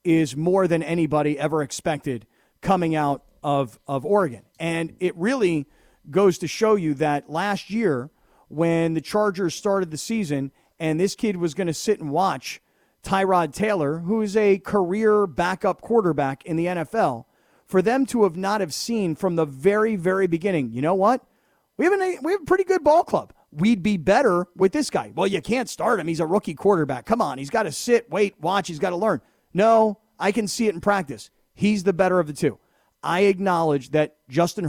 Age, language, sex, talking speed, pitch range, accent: 40-59, English, male, 200 wpm, 165-220 Hz, American